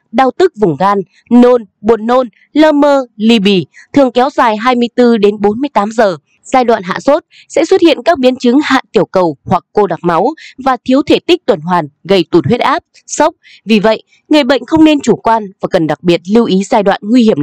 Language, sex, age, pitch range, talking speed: Vietnamese, female, 20-39, 190-280 Hz, 220 wpm